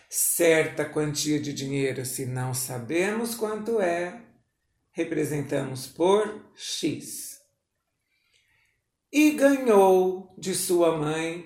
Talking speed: 90 wpm